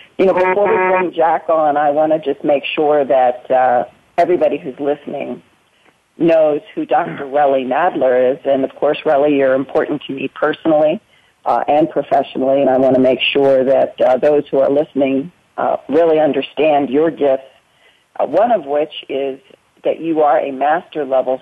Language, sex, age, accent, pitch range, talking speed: English, female, 40-59, American, 135-175 Hz, 175 wpm